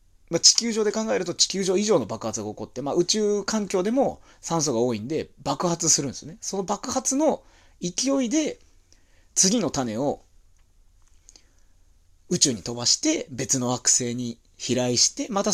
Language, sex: Japanese, male